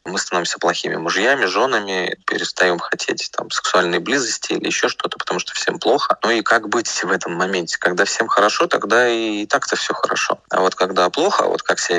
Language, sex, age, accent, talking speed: Russian, male, 20-39, native, 195 wpm